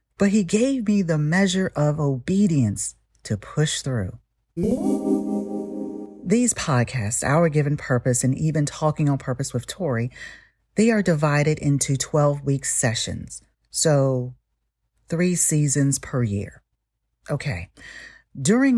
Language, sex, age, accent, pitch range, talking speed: English, female, 40-59, American, 135-195 Hz, 115 wpm